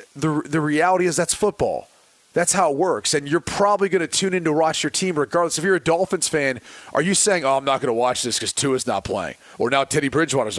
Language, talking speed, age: English, 255 wpm, 30-49